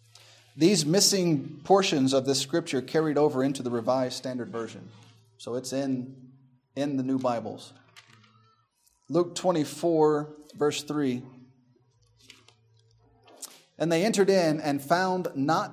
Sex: male